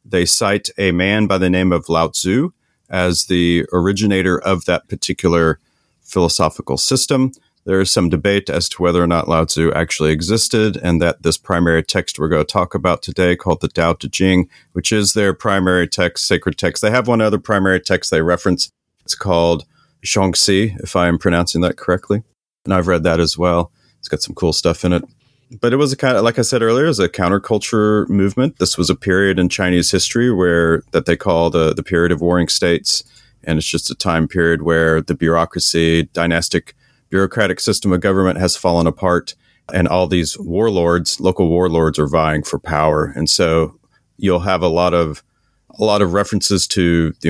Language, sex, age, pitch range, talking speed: English, male, 40-59, 85-100 Hz, 195 wpm